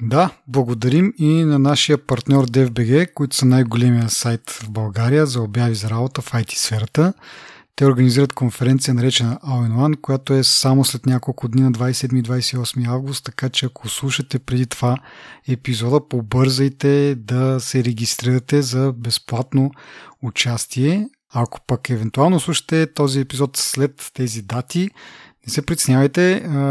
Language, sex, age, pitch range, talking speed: Bulgarian, male, 30-49, 125-140 Hz, 135 wpm